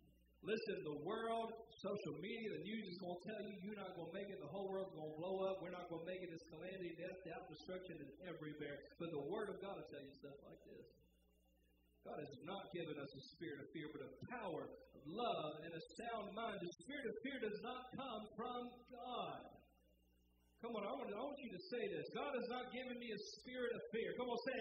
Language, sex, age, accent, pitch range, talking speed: English, male, 50-69, American, 150-215 Hz, 240 wpm